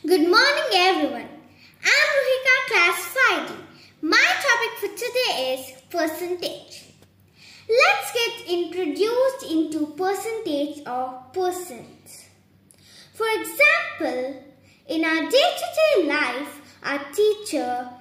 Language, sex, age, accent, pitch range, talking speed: English, female, 20-39, Indian, 285-420 Hz, 105 wpm